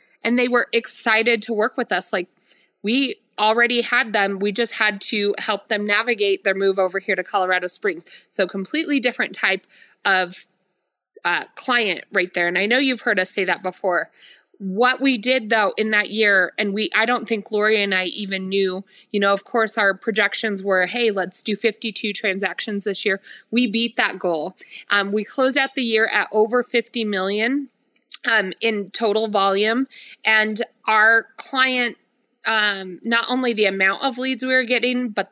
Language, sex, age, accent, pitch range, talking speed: English, female, 20-39, American, 200-245 Hz, 185 wpm